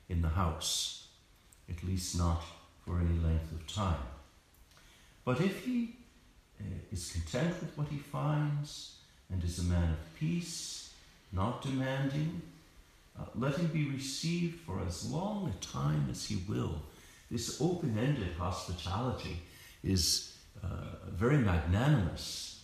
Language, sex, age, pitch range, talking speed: English, male, 60-79, 85-125 Hz, 125 wpm